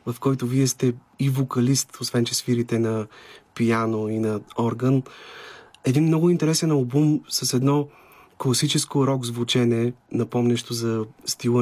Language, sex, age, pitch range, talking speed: Bulgarian, male, 30-49, 120-135 Hz, 135 wpm